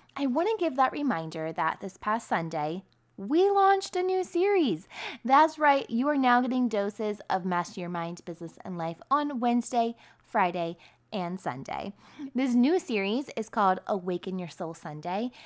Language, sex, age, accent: English, female, 20-39, American